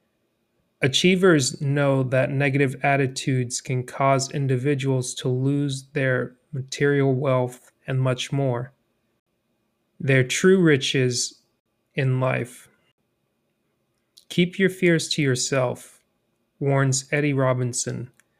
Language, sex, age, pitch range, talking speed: English, male, 30-49, 125-145 Hz, 95 wpm